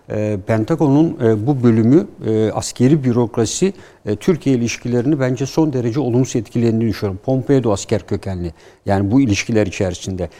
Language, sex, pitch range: Turkish, male, 105-135 Hz